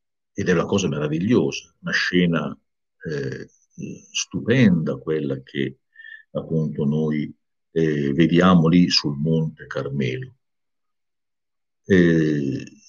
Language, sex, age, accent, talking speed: Italian, male, 50-69, native, 95 wpm